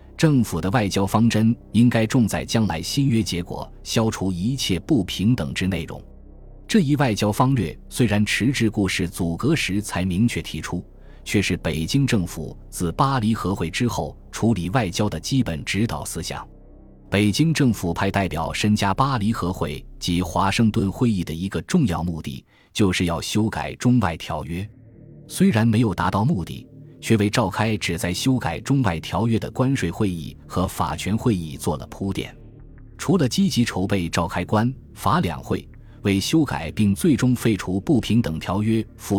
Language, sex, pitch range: Chinese, male, 90-120 Hz